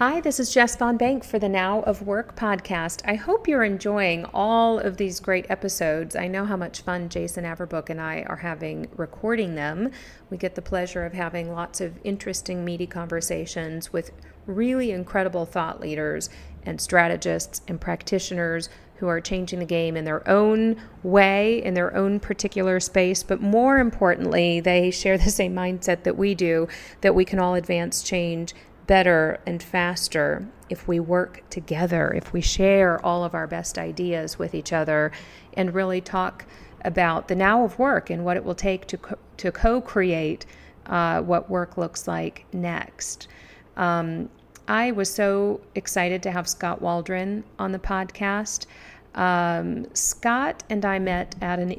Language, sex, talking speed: English, female, 165 wpm